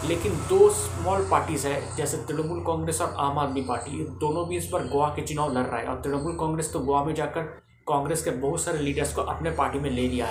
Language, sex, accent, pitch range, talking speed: Hindi, male, native, 120-155 Hz, 235 wpm